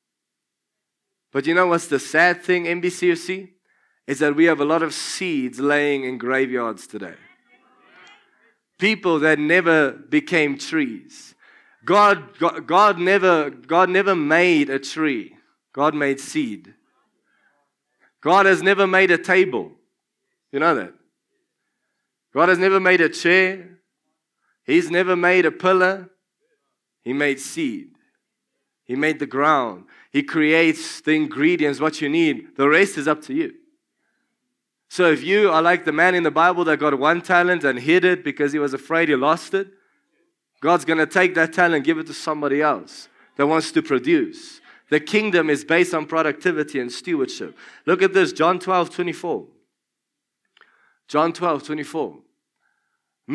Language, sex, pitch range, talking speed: English, male, 155-200 Hz, 150 wpm